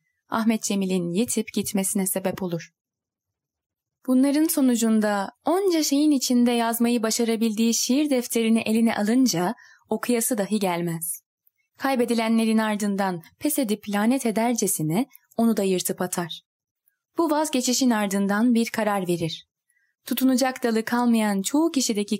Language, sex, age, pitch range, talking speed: Turkish, female, 10-29, 195-250 Hz, 110 wpm